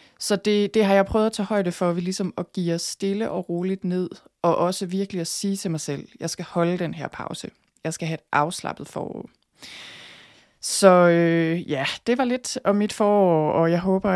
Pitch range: 165-195 Hz